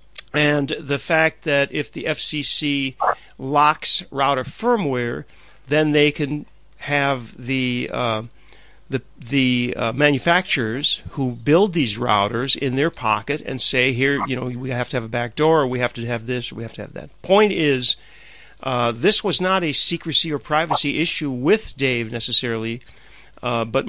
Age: 50-69